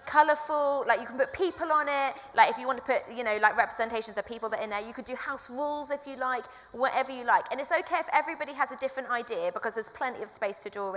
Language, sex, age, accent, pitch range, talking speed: English, female, 20-39, British, 225-295 Hz, 280 wpm